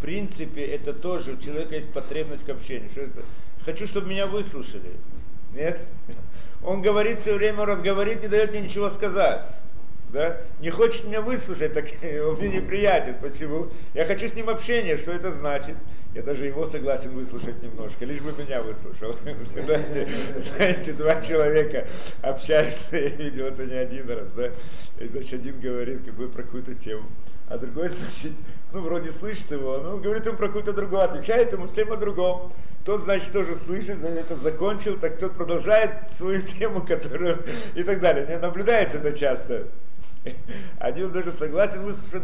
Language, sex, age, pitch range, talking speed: Russian, male, 50-69, 140-200 Hz, 165 wpm